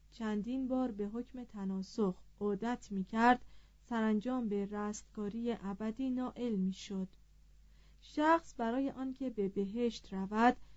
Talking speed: 110 wpm